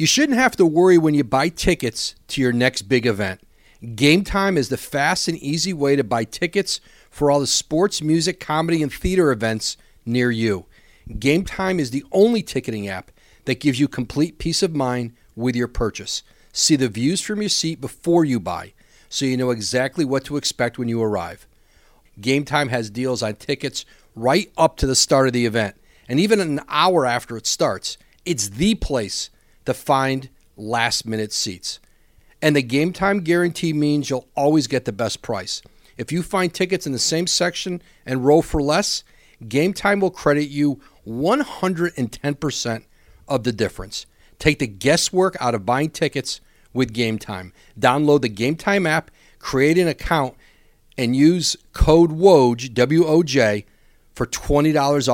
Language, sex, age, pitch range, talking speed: English, male, 40-59, 115-165 Hz, 170 wpm